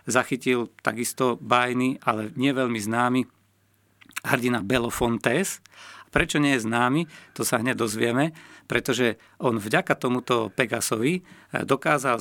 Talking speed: 120 wpm